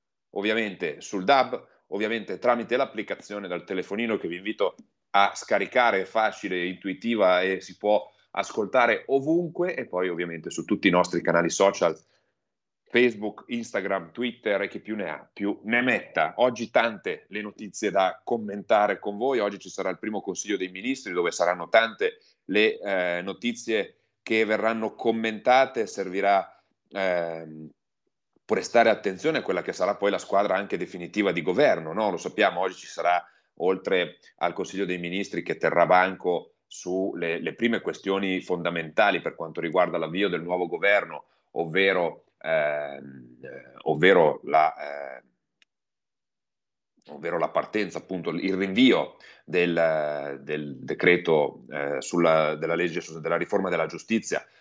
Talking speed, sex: 145 wpm, male